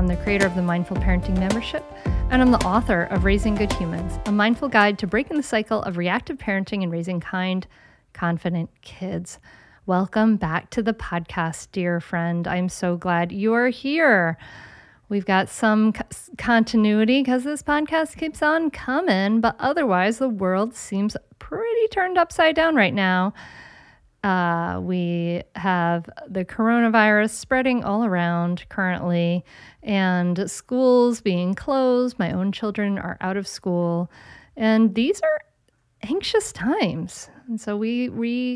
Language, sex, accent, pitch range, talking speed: English, female, American, 180-235 Hz, 145 wpm